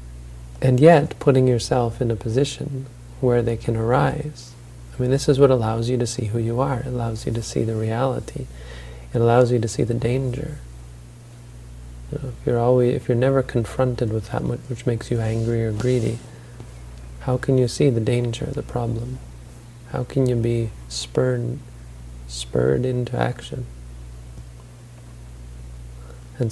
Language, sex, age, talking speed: English, male, 40-59, 160 wpm